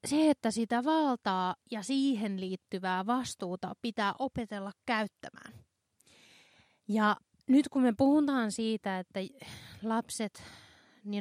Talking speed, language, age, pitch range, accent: 105 wpm, Finnish, 20-39, 190-235 Hz, native